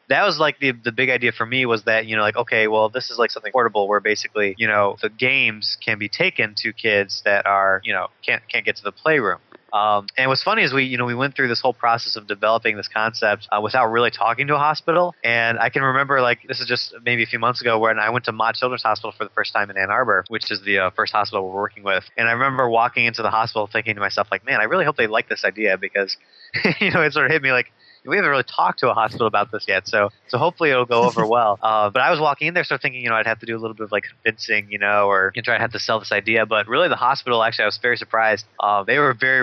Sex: male